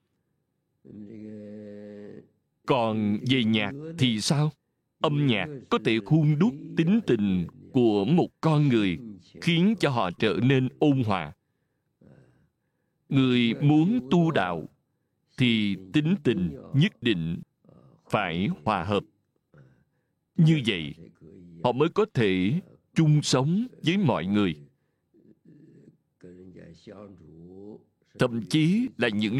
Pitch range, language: 105-155 Hz, Vietnamese